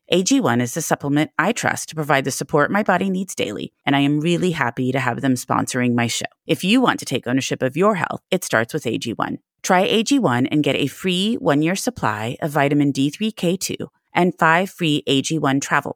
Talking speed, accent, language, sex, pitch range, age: 205 wpm, American, English, female, 140-190 Hz, 30-49